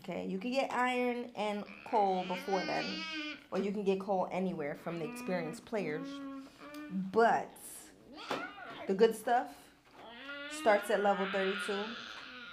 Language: English